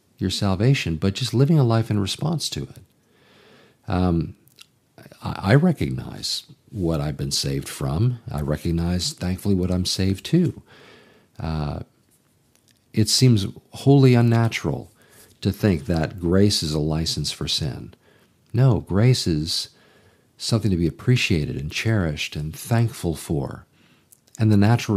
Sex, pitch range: male, 85-110 Hz